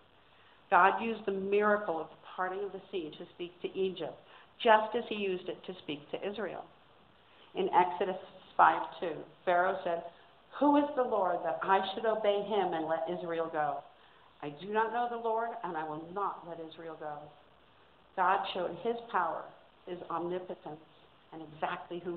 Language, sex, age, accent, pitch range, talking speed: English, female, 50-69, American, 165-205 Hz, 170 wpm